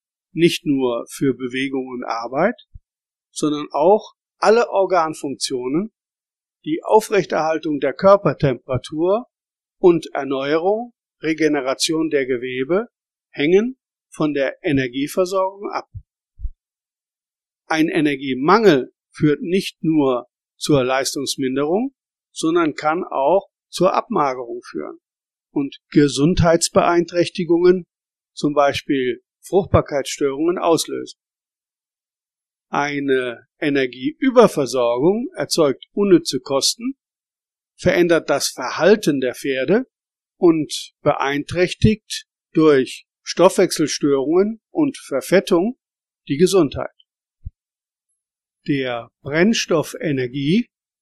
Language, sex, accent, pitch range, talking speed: German, male, German, 140-210 Hz, 75 wpm